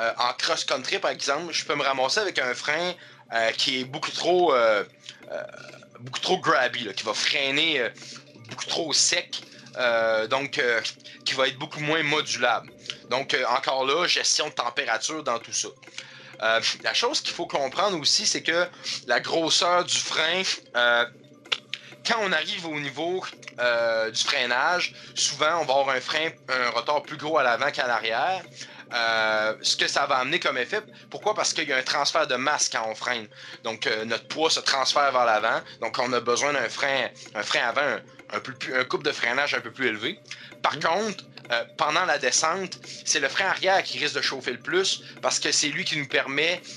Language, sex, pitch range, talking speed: French, male, 120-160 Hz, 200 wpm